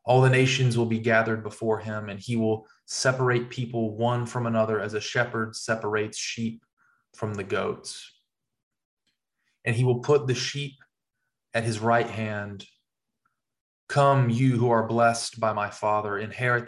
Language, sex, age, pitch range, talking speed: English, male, 20-39, 110-125 Hz, 155 wpm